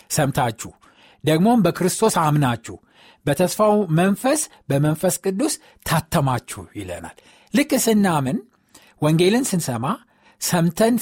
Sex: male